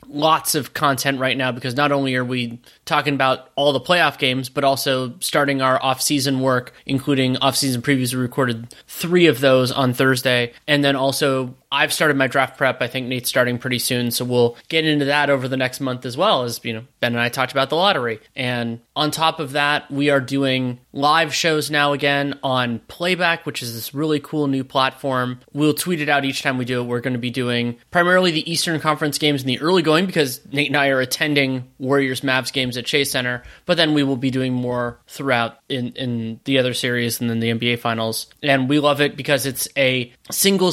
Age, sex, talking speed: 20-39, male, 220 wpm